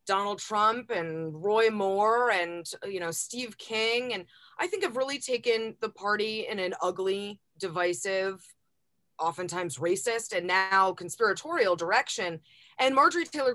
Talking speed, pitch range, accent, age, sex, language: 135 wpm, 195-275 Hz, American, 30-49, female, English